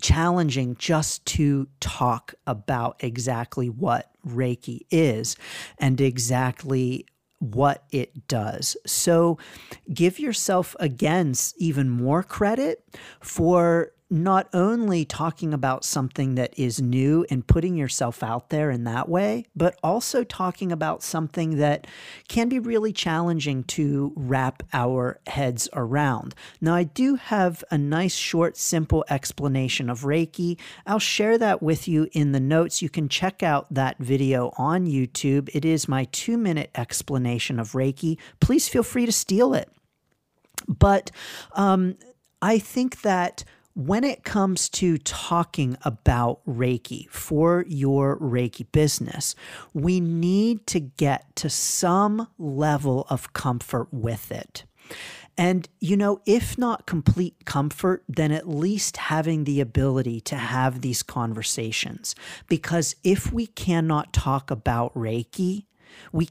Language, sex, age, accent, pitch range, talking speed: English, male, 40-59, American, 130-180 Hz, 130 wpm